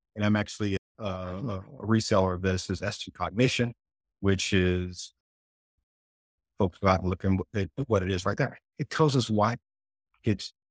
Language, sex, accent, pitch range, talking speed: English, male, American, 90-115 Hz, 165 wpm